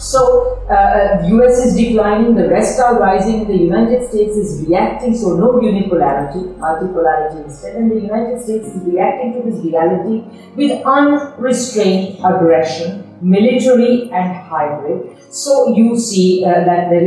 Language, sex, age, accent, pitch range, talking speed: English, female, 50-69, Indian, 175-235 Hz, 145 wpm